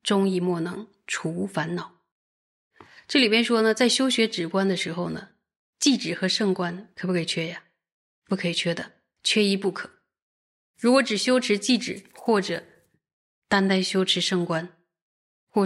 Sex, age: female, 20-39